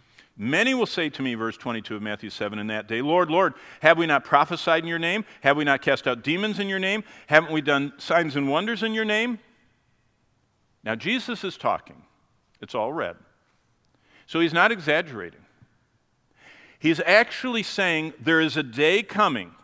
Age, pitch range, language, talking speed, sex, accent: 50-69, 120-180 Hz, English, 180 wpm, male, American